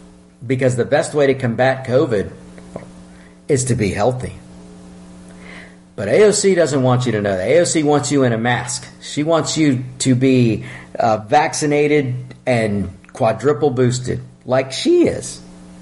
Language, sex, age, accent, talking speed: English, male, 50-69, American, 140 wpm